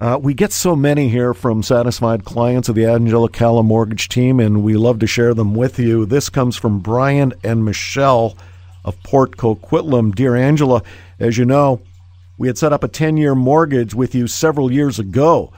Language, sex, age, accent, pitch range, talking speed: English, male, 50-69, American, 110-145 Hz, 195 wpm